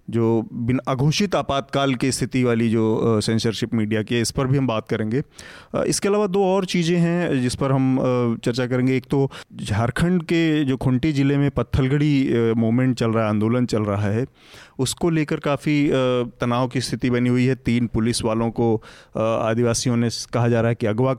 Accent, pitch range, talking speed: native, 120-145 Hz, 185 wpm